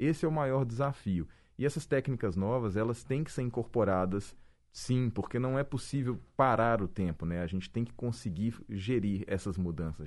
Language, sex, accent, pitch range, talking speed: Portuguese, male, Brazilian, 85-115 Hz, 185 wpm